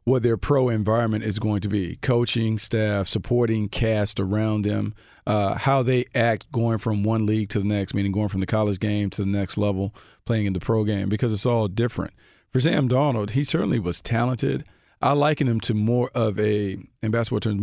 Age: 40-59